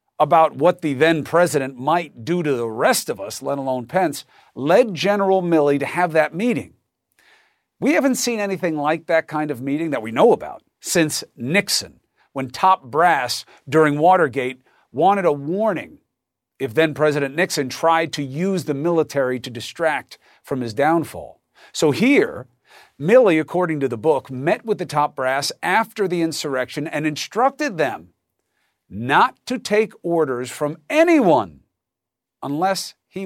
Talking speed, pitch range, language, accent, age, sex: 155 wpm, 135-190 Hz, English, American, 50-69, male